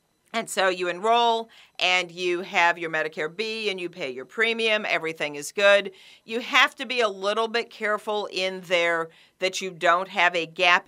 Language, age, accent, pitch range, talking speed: English, 50-69, American, 180-245 Hz, 190 wpm